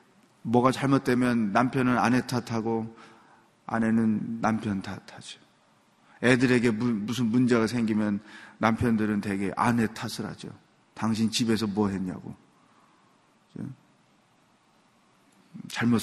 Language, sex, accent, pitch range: Korean, male, native, 110-150 Hz